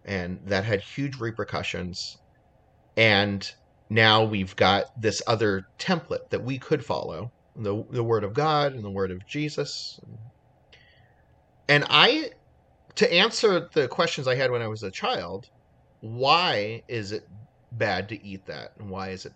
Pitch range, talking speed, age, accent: 95-130 Hz, 155 wpm, 30-49, American